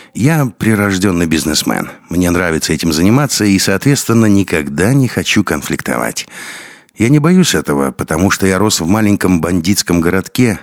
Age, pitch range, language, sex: 60-79, 85-110 Hz, Russian, male